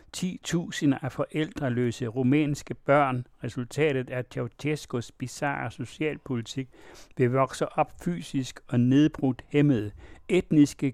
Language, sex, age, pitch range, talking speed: Danish, male, 60-79, 120-145 Hz, 100 wpm